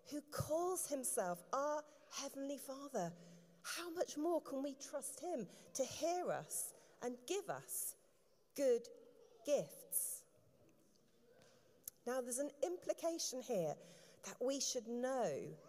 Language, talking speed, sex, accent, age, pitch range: English, 115 wpm, female, British, 40-59, 235-335 Hz